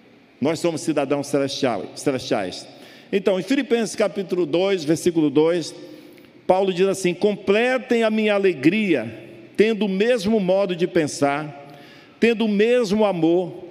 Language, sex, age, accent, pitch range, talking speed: Portuguese, male, 60-79, Brazilian, 180-230 Hz, 125 wpm